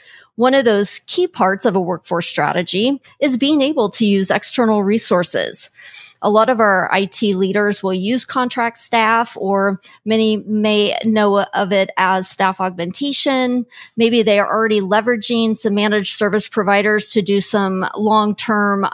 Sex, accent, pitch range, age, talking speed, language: female, American, 190-220 Hz, 40-59, 150 wpm, English